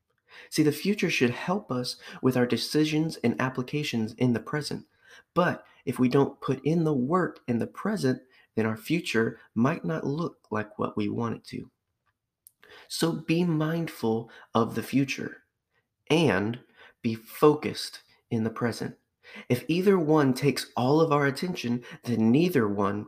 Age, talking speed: 30-49, 155 wpm